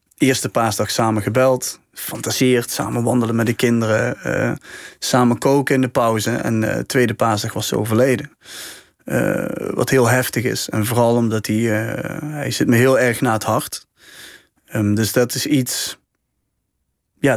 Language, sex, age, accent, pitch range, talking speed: Dutch, male, 30-49, Dutch, 110-135 Hz, 160 wpm